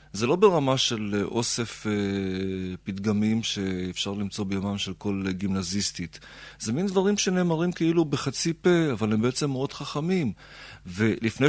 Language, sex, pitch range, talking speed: Hebrew, male, 100-135 Hz, 135 wpm